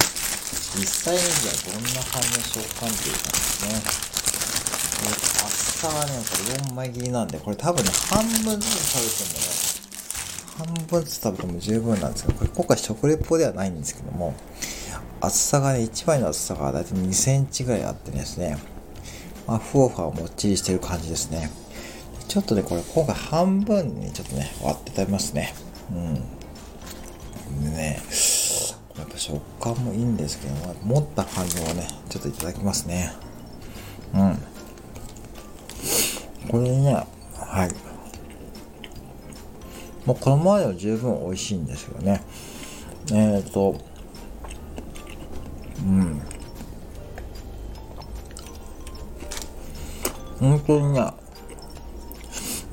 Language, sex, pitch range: Japanese, male, 75-120 Hz